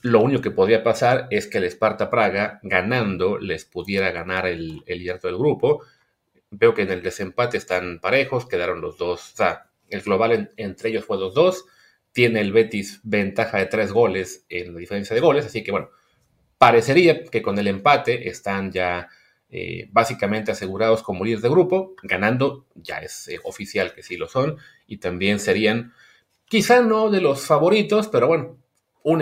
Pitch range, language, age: 100-165 Hz, Spanish, 30-49